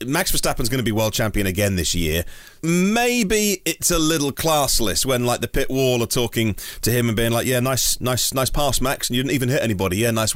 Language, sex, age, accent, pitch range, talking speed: English, male, 30-49, British, 105-145 Hz, 235 wpm